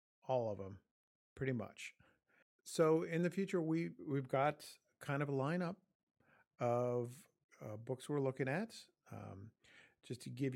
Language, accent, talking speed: English, American, 150 wpm